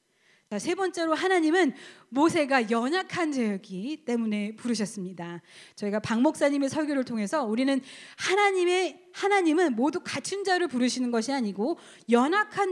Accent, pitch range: native, 215-330 Hz